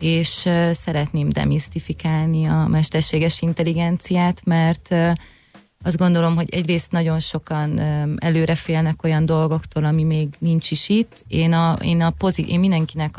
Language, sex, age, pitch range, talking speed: Hungarian, female, 30-49, 155-165 Hz, 120 wpm